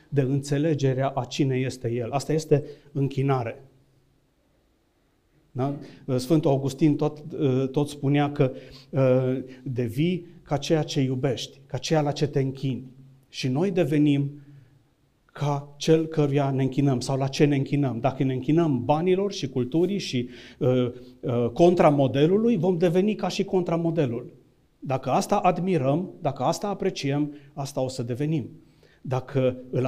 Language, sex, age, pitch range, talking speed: Romanian, male, 40-59, 130-160 Hz, 130 wpm